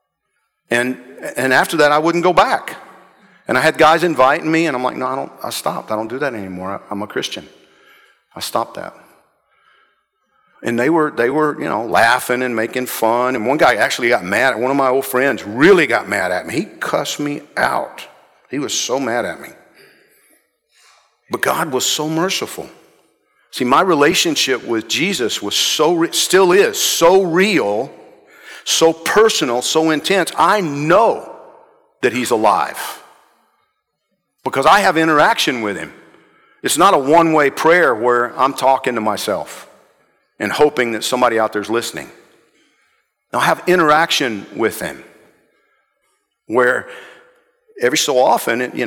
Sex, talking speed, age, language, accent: male, 160 wpm, 50-69, English, American